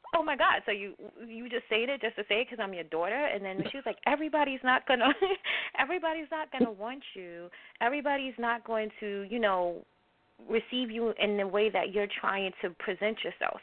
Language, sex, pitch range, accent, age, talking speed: English, female, 180-235 Hz, American, 20-39, 205 wpm